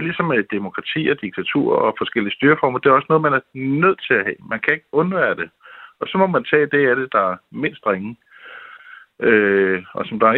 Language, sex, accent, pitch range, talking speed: Danish, male, native, 110-145 Hz, 230 wpm